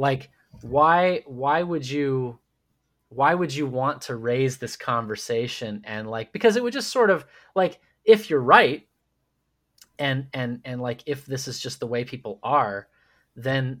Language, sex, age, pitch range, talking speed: English, male, 30-49, 130-190 Hz, 165 wpm